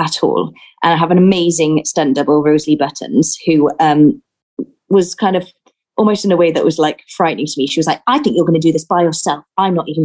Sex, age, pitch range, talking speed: female, 20-39, 155-200 Hz, 245 wpm